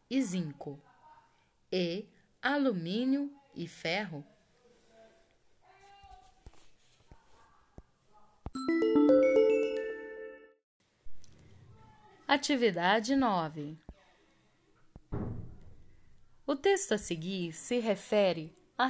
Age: 10-29